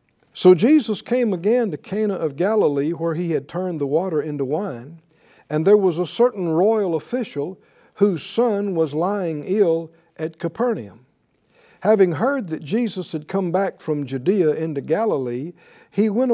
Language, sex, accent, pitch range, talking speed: English, male, American, 155-215 Hz, 160 wpm